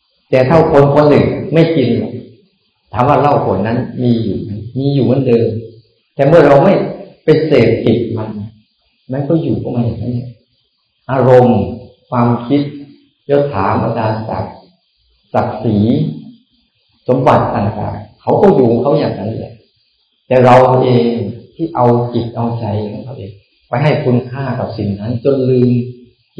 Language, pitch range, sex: Thai, 110-130 Hz, male